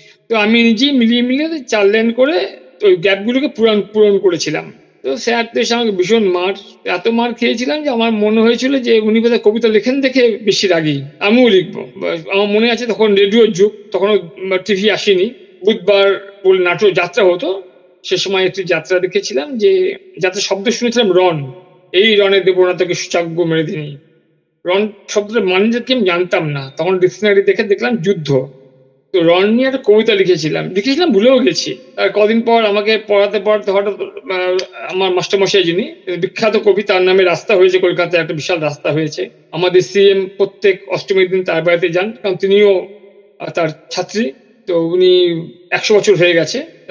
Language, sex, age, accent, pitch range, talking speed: Bengali, male, 50-69, native, 180-230 Hz, 110 wpm